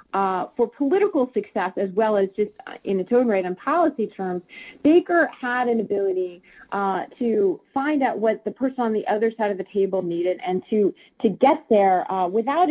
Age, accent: 40-59, American